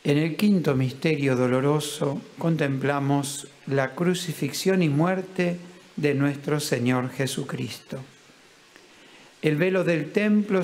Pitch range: 145-180 Hz